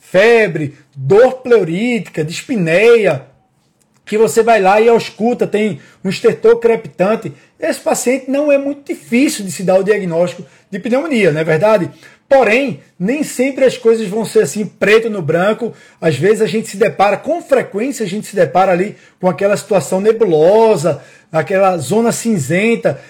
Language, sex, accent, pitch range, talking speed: Portuguese, male, Brazilian, 185-235 Hz, 160 wpm